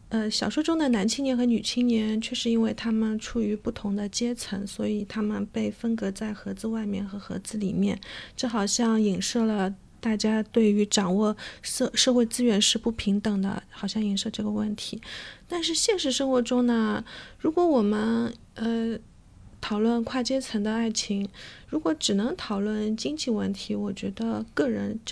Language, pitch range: English, 210-250 Hz